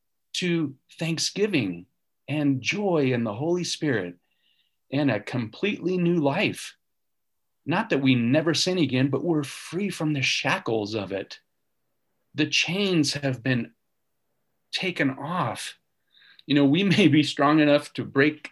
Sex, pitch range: male, 125-160 Hz